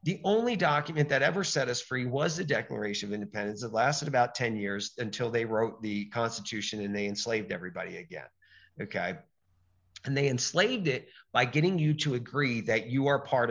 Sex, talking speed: male, 185 wpm